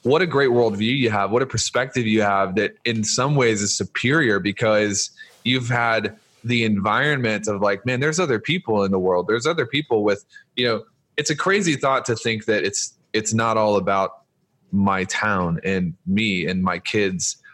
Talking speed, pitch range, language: 190 wpm, 100-125 Hz, English